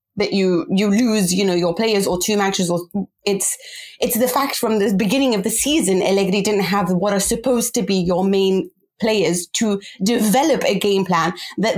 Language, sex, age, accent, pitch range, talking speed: English, female, 30-49, British, 195-245 Hz, 200 wpm